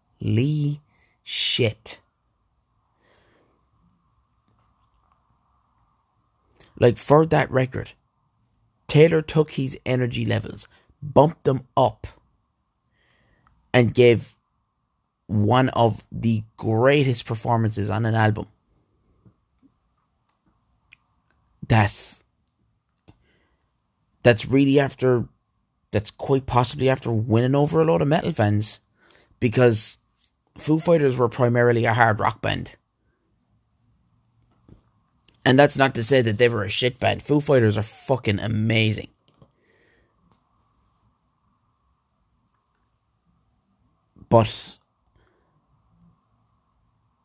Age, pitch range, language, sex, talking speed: 30-49, 110-130 Hz, English, male, 85 wpm